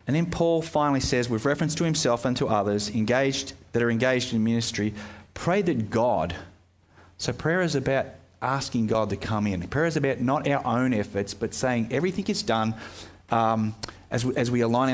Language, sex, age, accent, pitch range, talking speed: English, male, 30-49, Australian, 105-135 Hz, 195 wpm